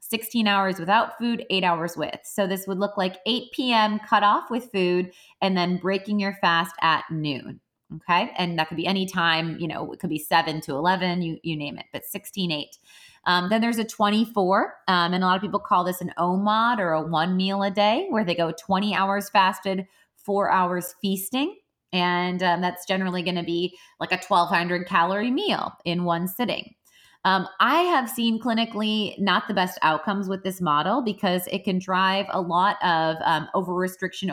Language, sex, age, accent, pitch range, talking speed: English, female, 20-39, American, 170-200 Hz, 200 wpm